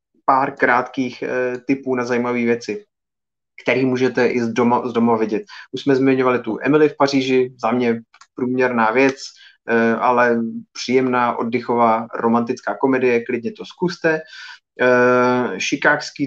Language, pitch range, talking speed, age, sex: Czech, 115-130 Hz, 125 wpm, 30-49, male